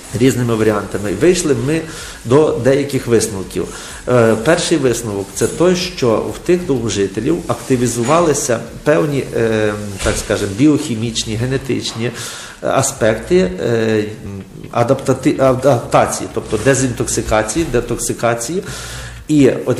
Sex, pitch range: male, 110-135 Hz